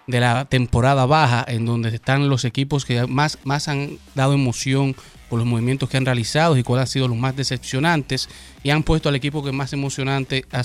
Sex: male